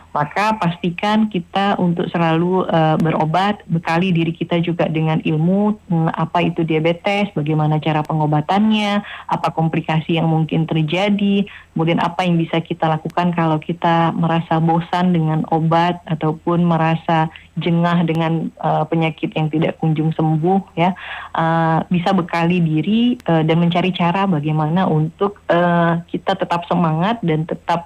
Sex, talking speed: female, 140 wpm